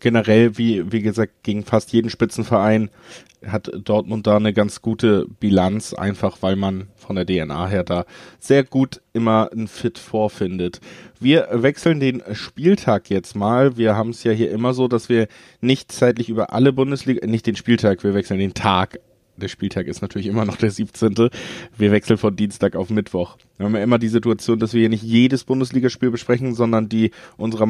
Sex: male